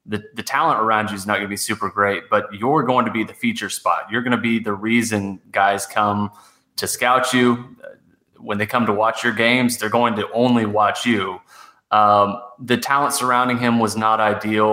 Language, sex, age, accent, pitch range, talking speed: English, male, 20-39, American, 105-120 Hz, 210 wpm